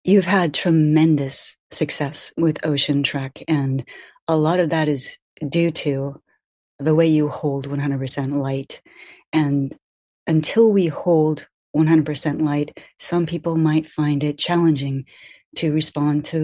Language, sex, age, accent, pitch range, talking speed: English, female, 30-49, American, 145-170 Hz, 130 wpm